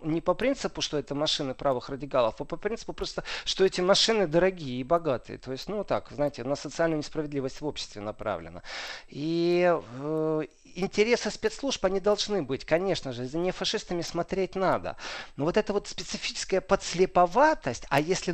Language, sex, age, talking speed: Russian, male, 40-59, 155 wpm